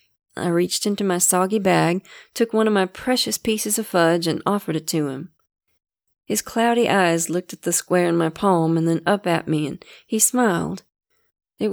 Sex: female